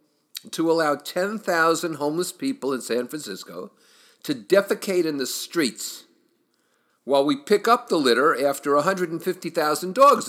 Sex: male